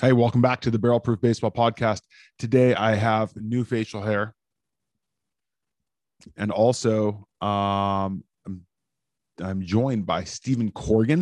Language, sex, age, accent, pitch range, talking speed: English, male, 20-39, American, 100-120 Hz, 120 wpm